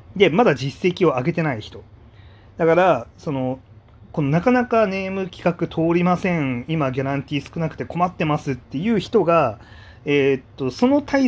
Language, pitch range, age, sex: Japanese, 120-185 Hz, 30-49, male